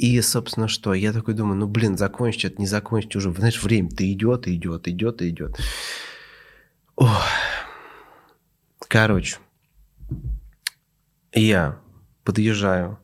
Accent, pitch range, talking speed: native, 95-130 Hz, 100 wpm